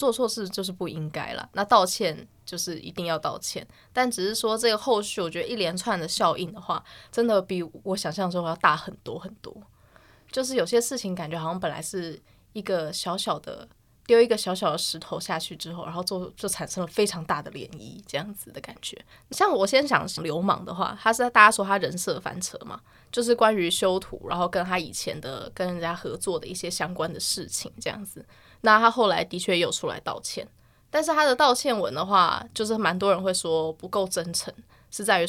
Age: 20-39